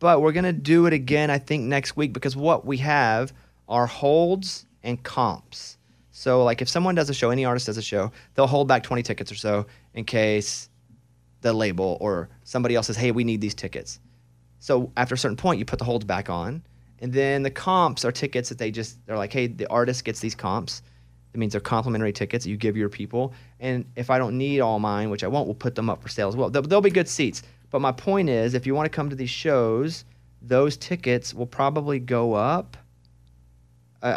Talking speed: 230 wpm